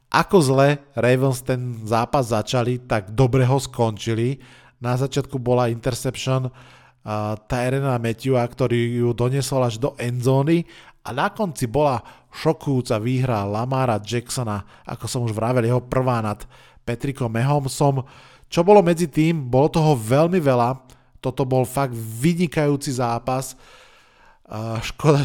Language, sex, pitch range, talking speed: Slovak, male, 120-140 Hz, 130 wpm